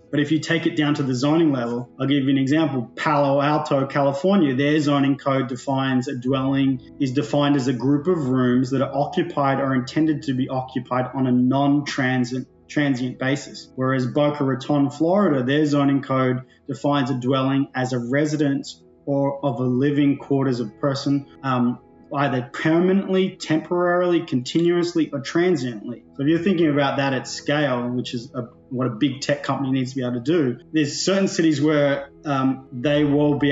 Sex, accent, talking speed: male, Australian, 180 wpm